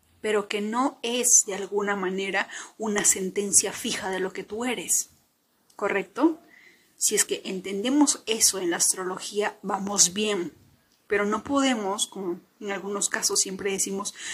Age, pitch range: 30-49, 195-250 Hz